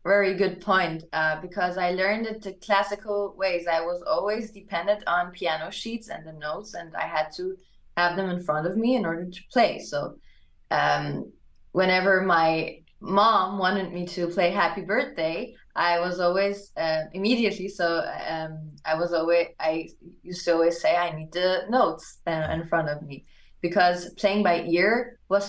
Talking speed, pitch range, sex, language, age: 175 wpm, 170-200 Hz, female, English, 20-39